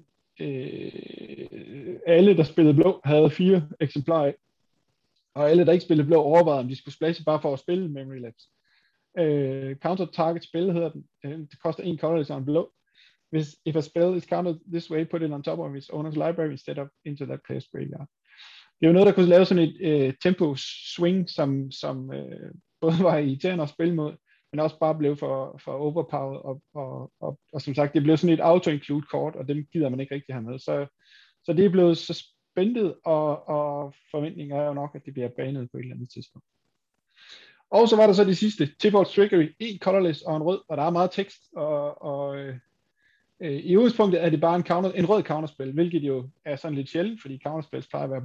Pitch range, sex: 145-175 Hz, male